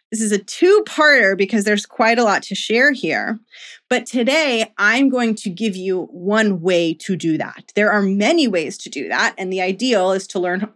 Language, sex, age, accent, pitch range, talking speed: English, female, 20-39, American, 185-245 Hz, 205 wpm